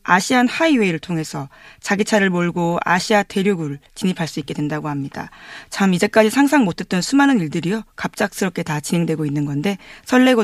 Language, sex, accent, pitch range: Korean, female, native, 165-220 Hz